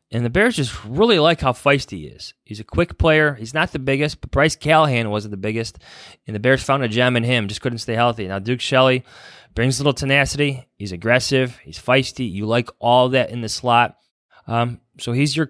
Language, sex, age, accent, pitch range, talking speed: English, male, 20-39, American, 95-125 Hz, 225 wpm